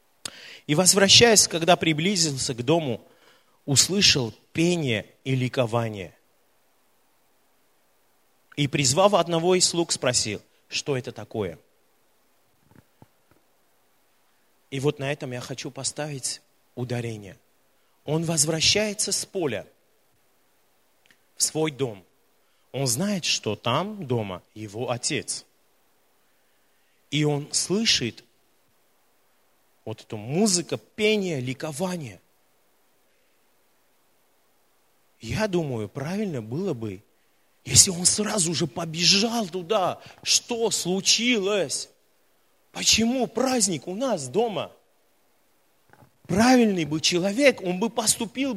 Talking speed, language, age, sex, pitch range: 90 wpm, Russian, 30-49, male, 135-215 Hz